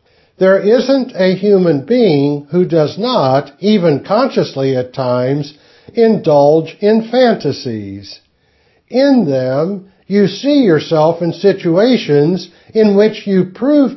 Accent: American